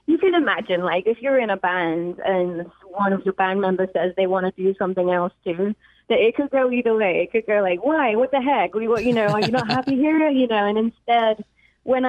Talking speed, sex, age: 255 wpm, female, 20-39